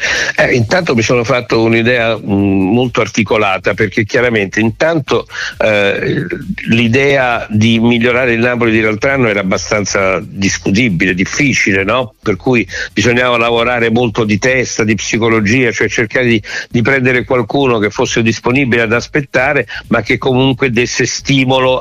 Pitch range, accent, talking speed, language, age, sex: 105-130 Hz, native, 130 wpm, Italian, 60-79, male